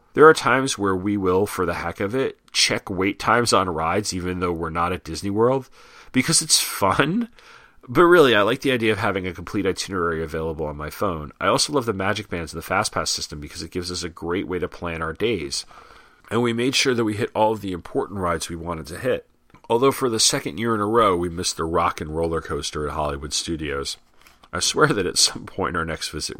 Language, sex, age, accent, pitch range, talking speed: English, male, 40-59, American, 85-110 Hz, 240 wpm